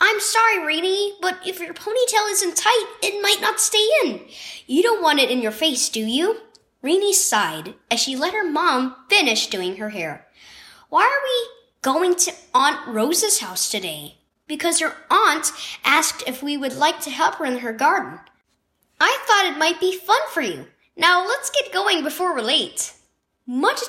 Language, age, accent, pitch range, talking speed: English, 10-29, American, 250-380 Hz, 185 wpm